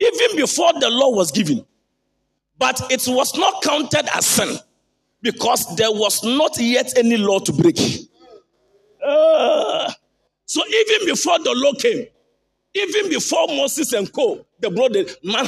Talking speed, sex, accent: 145 wpm, male, Nigerian